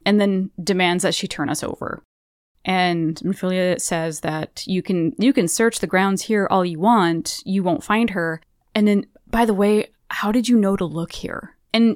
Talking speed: 200 wpm